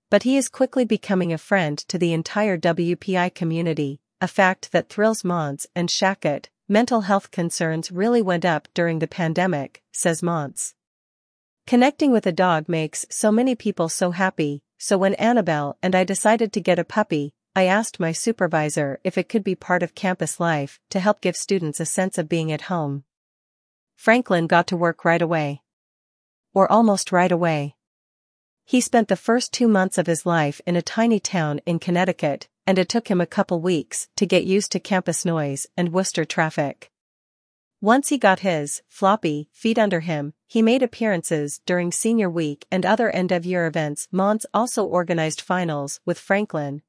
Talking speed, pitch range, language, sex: 175 wpm, 160-200 Hz, English, female